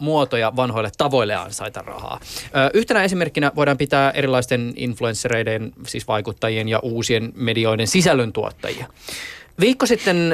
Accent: native